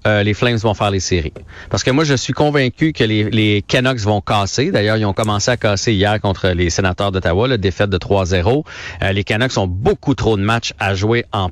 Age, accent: 40-59, Canadian